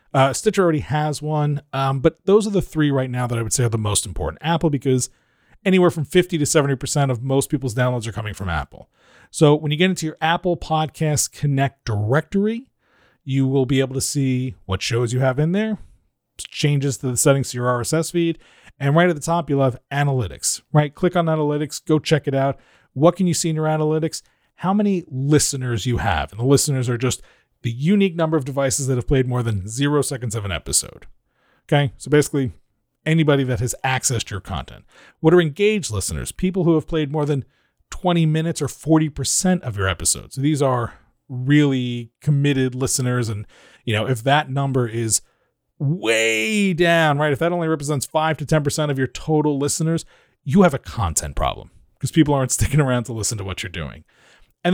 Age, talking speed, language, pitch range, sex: 40-59, 200 wpm, English, 125-160 Hz, male